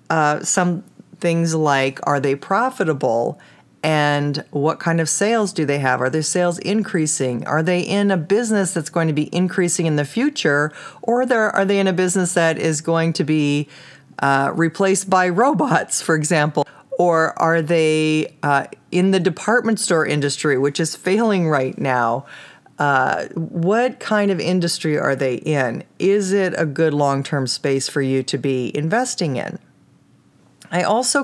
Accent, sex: American, female